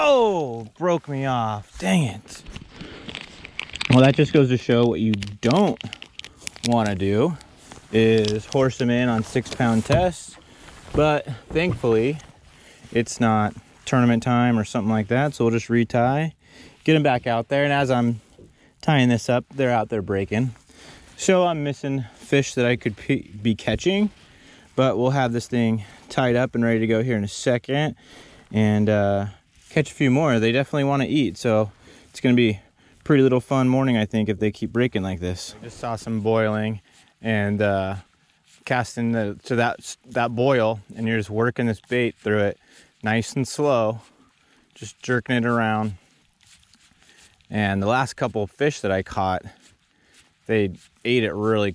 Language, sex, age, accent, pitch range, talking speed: English, male, 30-49, American, 105-125 Hz, 170 wpm